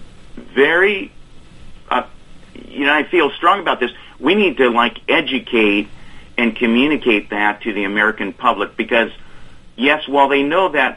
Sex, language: male, English